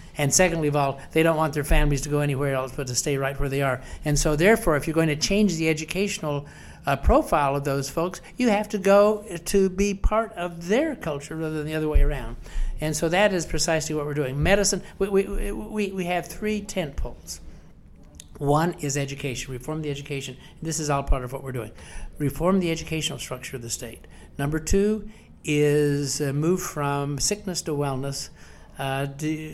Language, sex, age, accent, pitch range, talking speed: English, male, 60-79, American, 140-185 Hz, 200 wpm